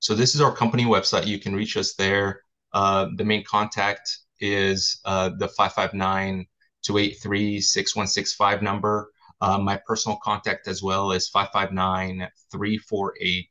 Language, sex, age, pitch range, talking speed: English, male, 30-49, 90-100 Hz, 140 wpm